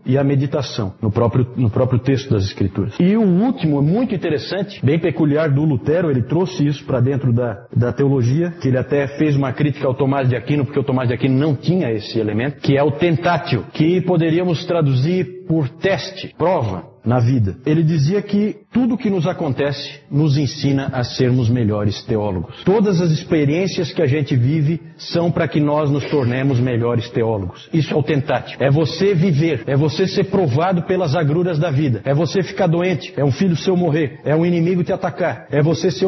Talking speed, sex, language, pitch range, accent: 200 wpm, male, Portuguese, 135-180 Hz, Brazilian